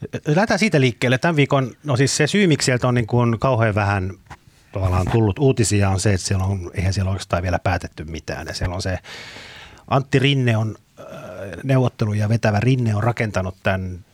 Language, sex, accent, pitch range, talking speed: Finnish, male, native, 90-115 Hz, 185 wpm